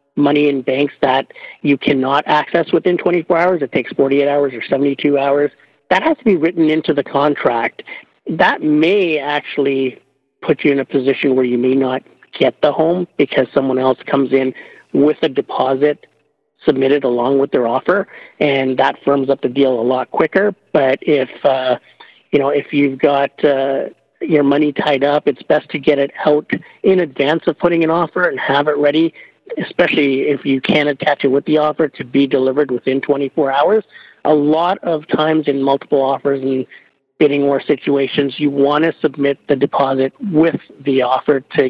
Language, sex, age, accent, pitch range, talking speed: English, male, 50-69, American, 135-155 Hz, 185 wpm